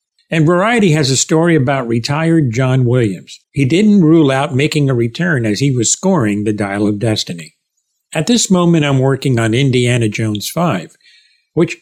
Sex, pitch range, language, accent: male, 120-180 Hz, English, American